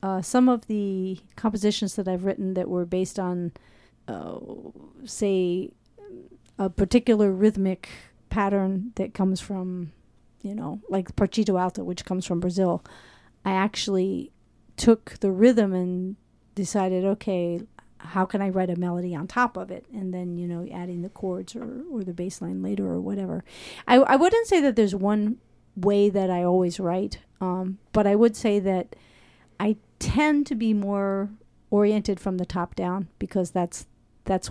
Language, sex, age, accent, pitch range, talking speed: English, female, 40-59, American, 180-210 Hz, 165 wpm